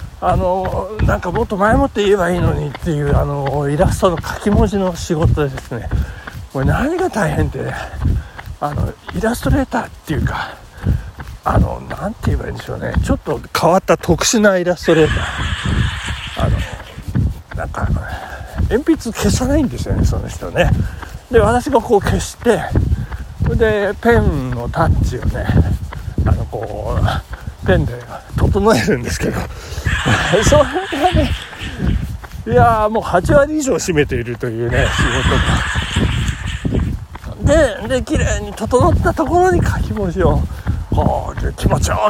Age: 60-79